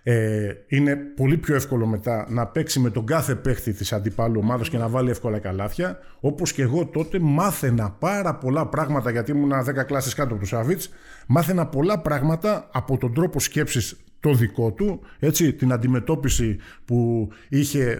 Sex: male